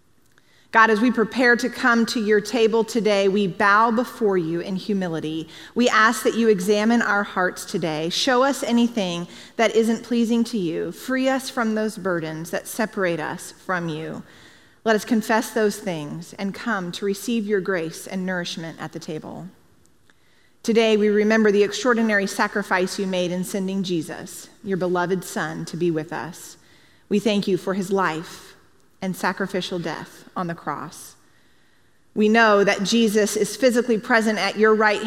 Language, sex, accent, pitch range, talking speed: English, female, American, 185-230 Hz, 170 wpm